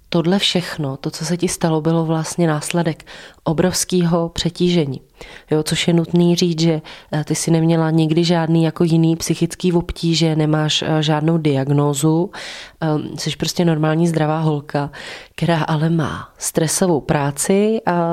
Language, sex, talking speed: Czech, female, 135 wpm